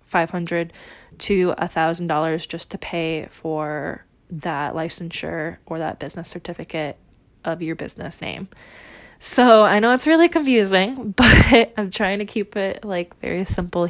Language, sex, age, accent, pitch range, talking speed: English, female, 20-39, American, 170-200 Hz, 145 wpm